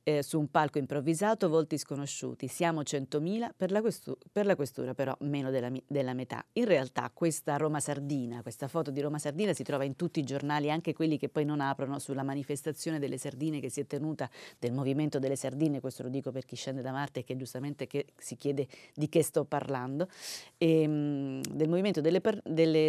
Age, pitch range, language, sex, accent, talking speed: 30-49, 135-155 Hz, Italian, female, native, 205 wpm